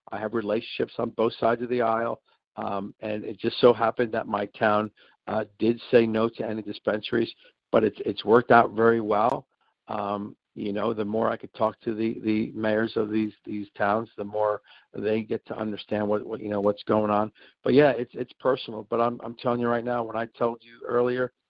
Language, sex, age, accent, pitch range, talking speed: English, male, 50-69, American, 105-120 Hz, 220 wpm